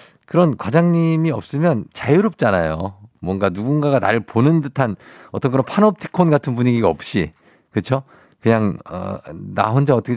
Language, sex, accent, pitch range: Korean, male, native, 125-180 Hz